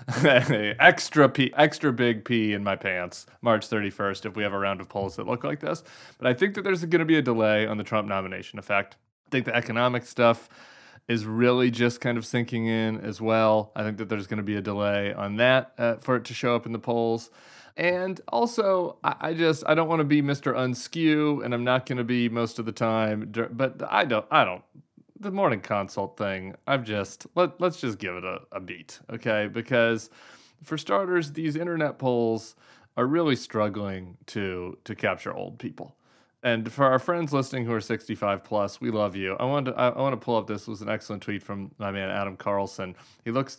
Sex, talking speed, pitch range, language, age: male, 220 wpm, 105-135 Hz, English, 30-49